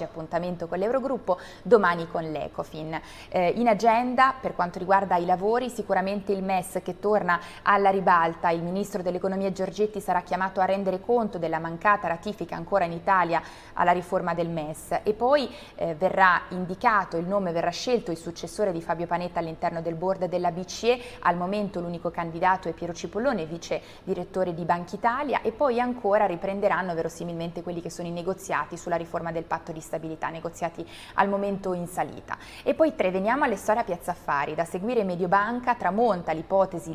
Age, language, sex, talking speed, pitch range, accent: 20-39, Italian, female, 170 wpm, 170-205 Hz, native